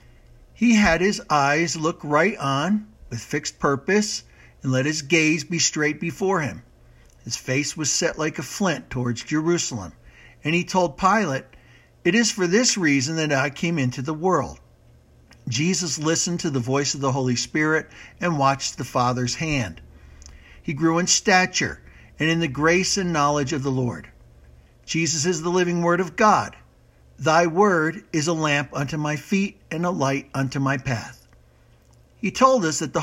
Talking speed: 175 wpm